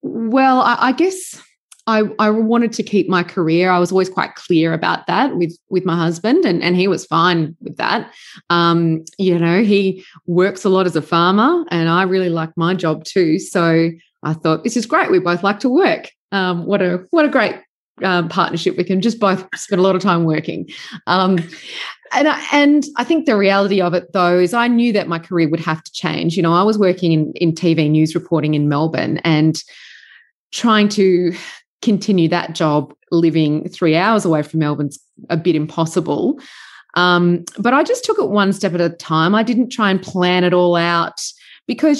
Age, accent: 20-39, Australian